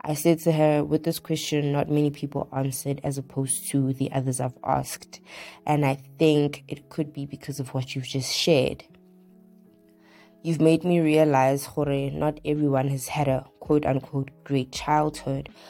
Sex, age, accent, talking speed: female, 20-39, South African, 165 wpm